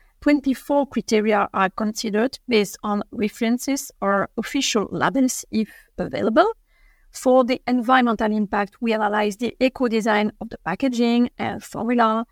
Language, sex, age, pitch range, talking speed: English, female, 50-69, 215-245 Hz, 120 wpm